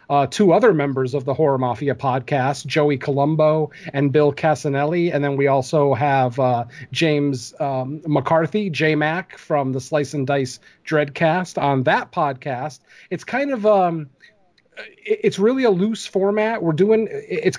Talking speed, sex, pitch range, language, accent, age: 150 wpm, male, 140-175 Hz, English, American, 40-59